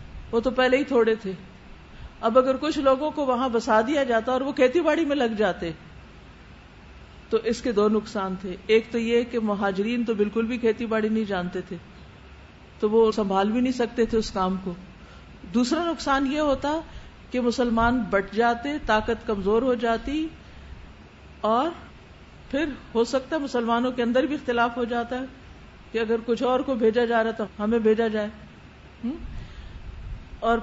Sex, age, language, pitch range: female, 50-69, Urdu, 215-265 Hz